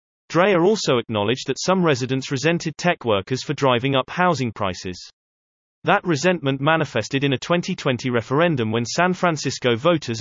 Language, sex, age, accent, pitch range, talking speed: English, male, 30-49, British, 120-160 Hz, 145 wpm